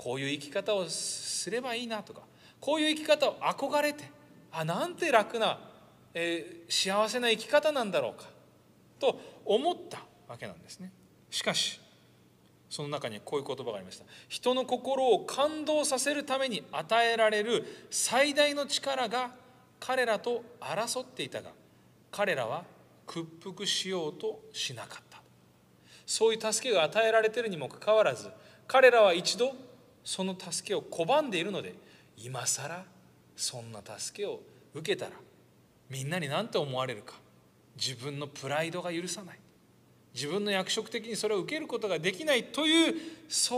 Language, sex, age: Japanese, male, 30-49